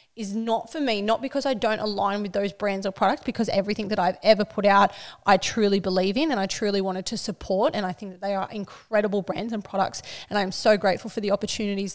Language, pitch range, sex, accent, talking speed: English, 200-230 Hz, female, Australian, 240 wpm